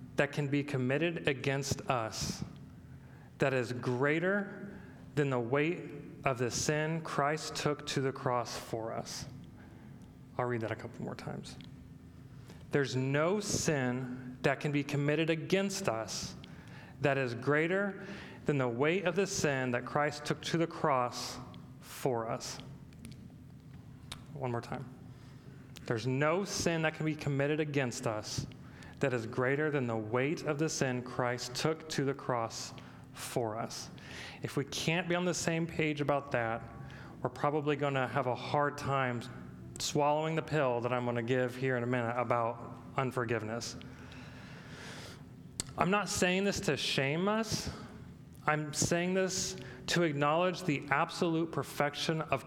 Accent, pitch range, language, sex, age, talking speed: American, 125-155 Hz, English, male, 40-59, 150 wpm